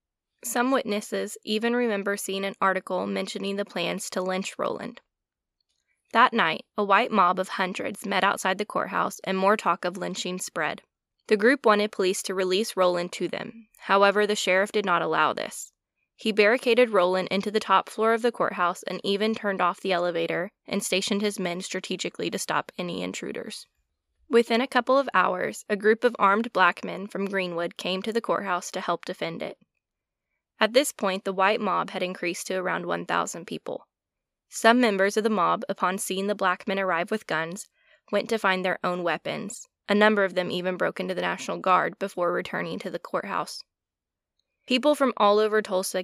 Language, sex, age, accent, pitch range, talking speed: English, female, 10-29, American, 185-215 Hz, 185 wpm